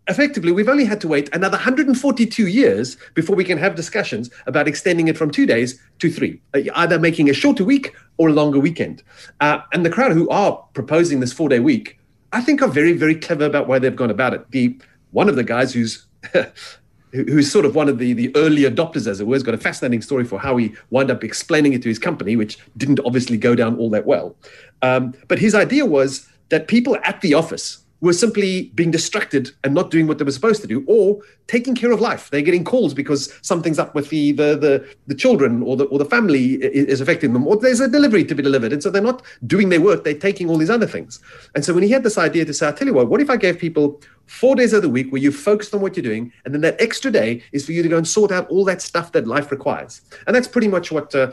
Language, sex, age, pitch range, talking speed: English, male, 40-59, 135-200 Hz, 255 wpm